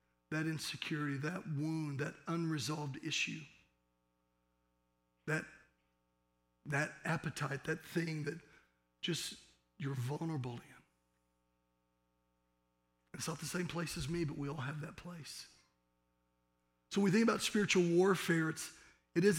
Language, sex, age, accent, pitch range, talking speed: English, male, 40-59, American, 120-180 Hz, 120 wpm